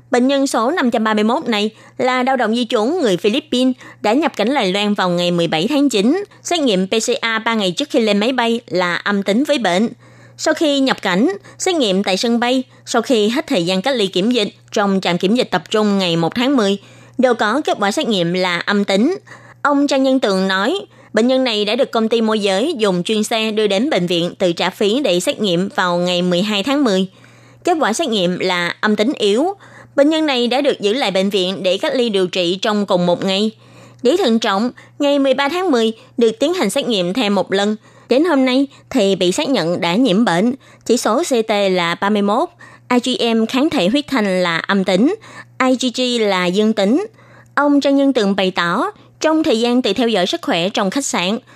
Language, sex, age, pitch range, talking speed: Vietnamese, female, 20-39, 195-265 Hz, 220 wpm